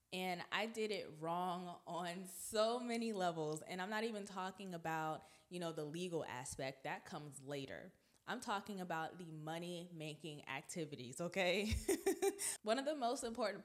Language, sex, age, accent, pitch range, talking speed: English, female, 20-39, American, 165-210 Hz, 155 wpm